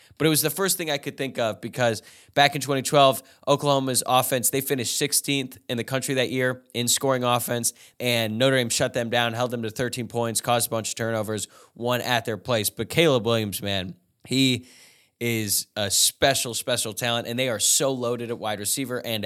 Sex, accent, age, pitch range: male, American, 10-29, 110-130 Hz